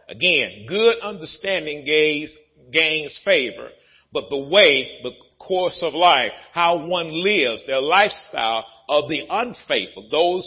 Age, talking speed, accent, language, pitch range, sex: 50-69, 125 wpm, American, English, 135-190 Hz, male